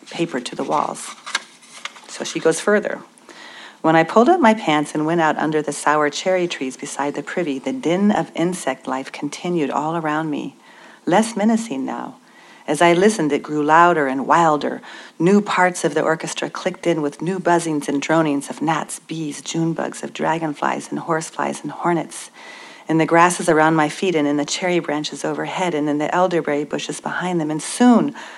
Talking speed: 190 wpm